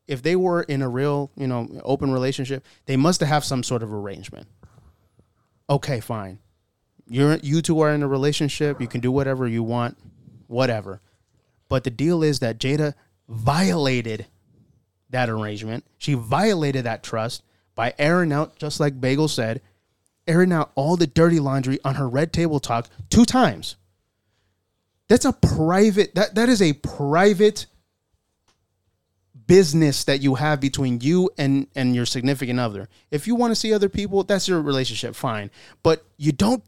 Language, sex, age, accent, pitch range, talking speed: English, male, 30-49, American, 110-160 Hz, 160 wpm